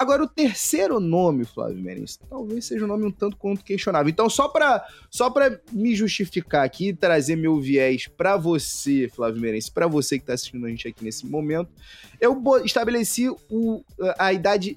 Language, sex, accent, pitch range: Portuguese, male, Brazilian, 145-220 Hz